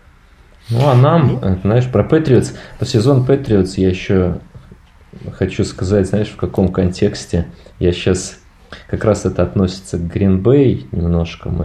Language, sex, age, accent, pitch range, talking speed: Russian, male, 20-39, native, 85-100 Hz, 135 wpm